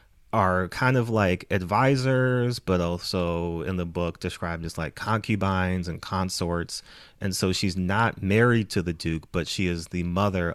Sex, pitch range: male, 90-110 Hz